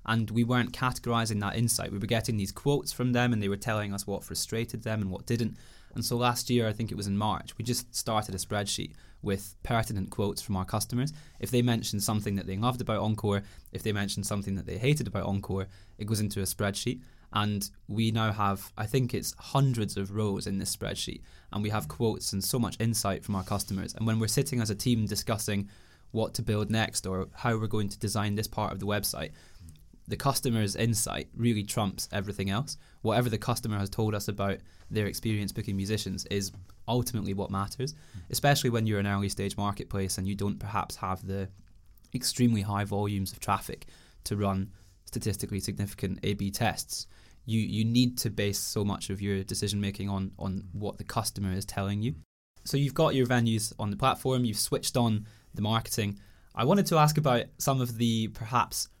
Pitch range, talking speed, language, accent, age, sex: 100-115 Hz, 205 wpm, English, British, 20-39, male